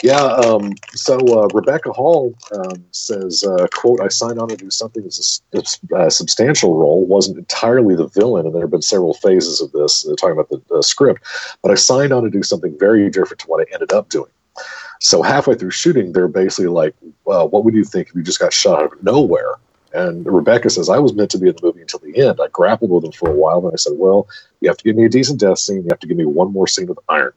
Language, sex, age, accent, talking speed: English, male, 40-59, American, 260 wpm